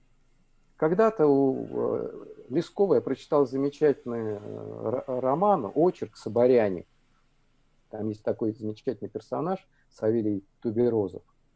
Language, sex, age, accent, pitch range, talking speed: Russian, male, 50-69, native, 125-195 Hz, 85 wpm